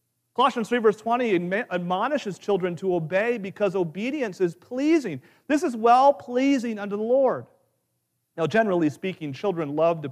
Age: 40-59